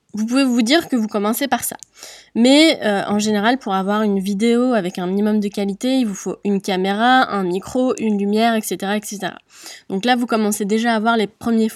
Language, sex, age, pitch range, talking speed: French, female, 20-39, 205-250 Hz, 215 wpm